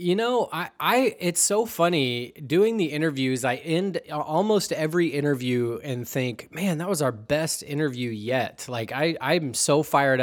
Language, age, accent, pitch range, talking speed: English, 20-39, American, 120-150 Hz, 170 wpm